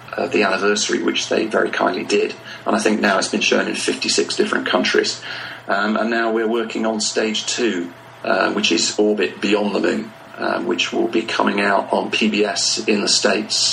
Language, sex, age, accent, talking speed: English, male, 40-59, British, 190 wpm